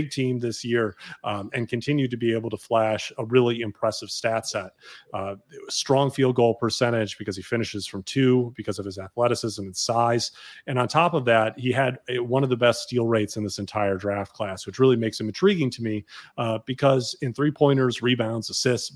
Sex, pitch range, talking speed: male, 105-130 Hz, 210 wpm